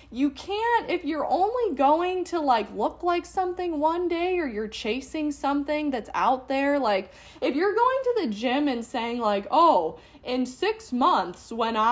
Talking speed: 175 wpm